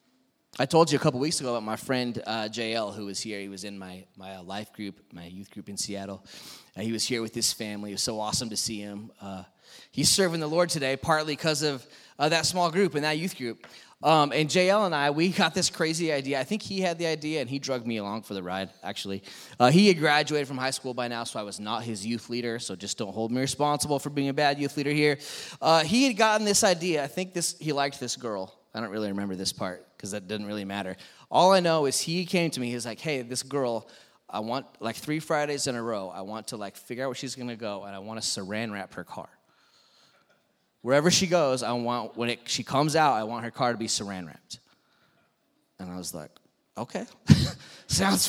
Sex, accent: male, American